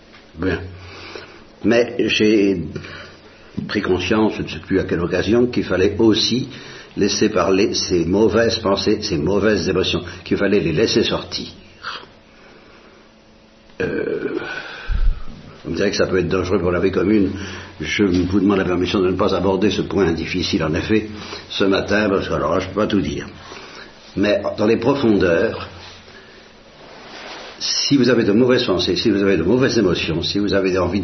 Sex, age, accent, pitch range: male, 60-79, French, 90-110 Hz